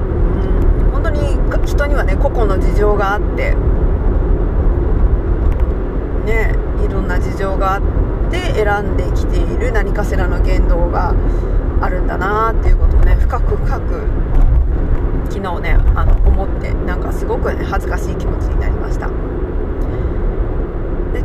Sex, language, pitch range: female, Japanese, 70-90 Hz